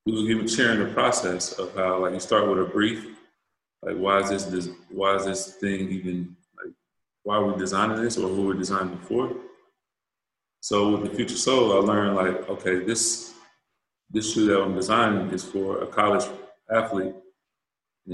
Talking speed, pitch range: 190 wpm, 95-105 Hz